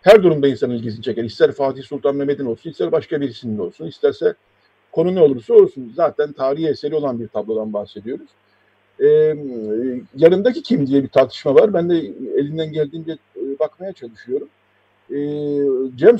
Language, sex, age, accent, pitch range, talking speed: Turkish, male, 50-69, native, 130-200 Hz, 145 wpm